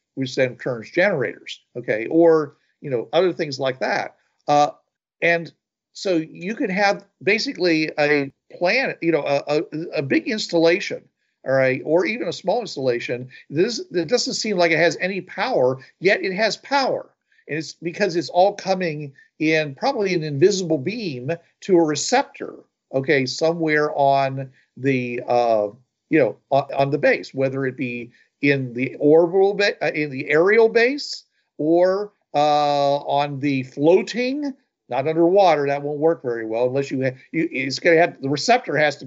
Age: 50-69